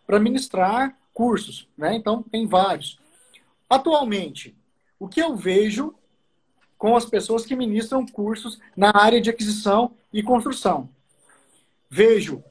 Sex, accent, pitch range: male, Brazilian, 210-265 Hz